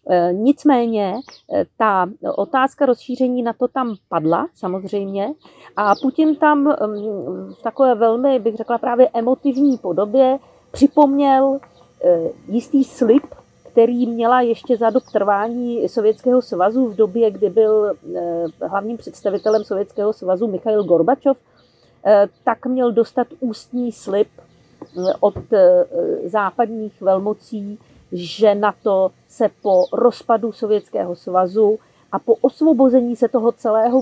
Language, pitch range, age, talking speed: Czech, 200-260 Hz, 40-59, 110 wpm